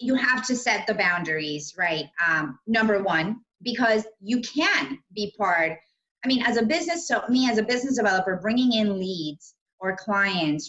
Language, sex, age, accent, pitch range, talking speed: English, female, 30-49, American, 165-220 Hz, 175 wpm